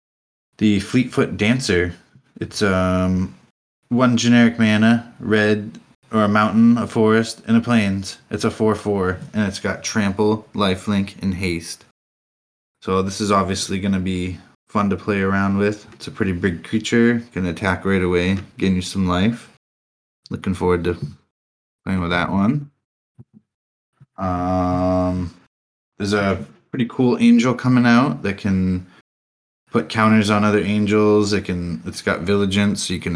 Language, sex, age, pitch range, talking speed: English, male, 20-39, 90-105 Hz, 155 wpm